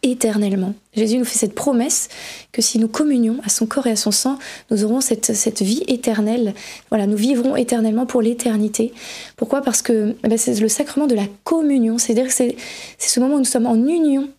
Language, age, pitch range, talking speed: French, 20-39, 225-255 Hz, 205 wpm